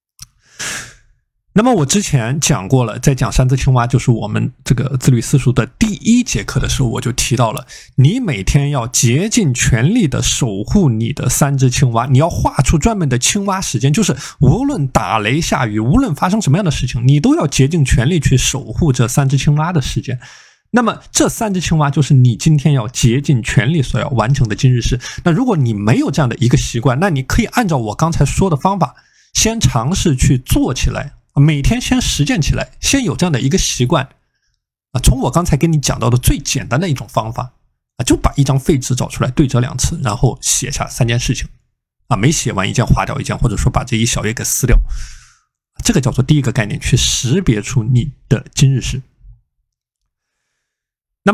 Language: Chinese